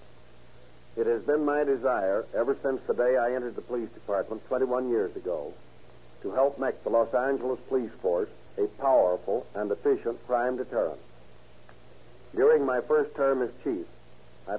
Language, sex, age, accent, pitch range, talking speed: English, male, 60-79, American, 115-145 Hz, 155 wpm